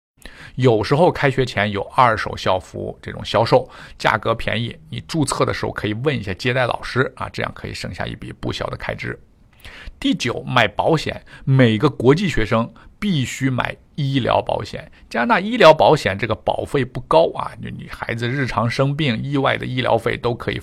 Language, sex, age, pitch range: Chinese, male, 50-69, 110-140 Hz